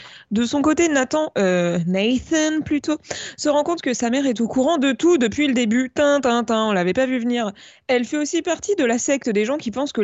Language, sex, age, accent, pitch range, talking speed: French, female, 20-39, French, 210-280 Hz, 245 wpm